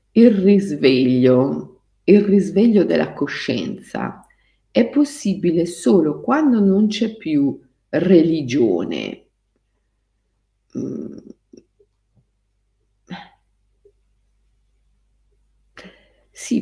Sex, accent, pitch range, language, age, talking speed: female, native, 150-235 Hz, Italian, 50-69, 55 wpm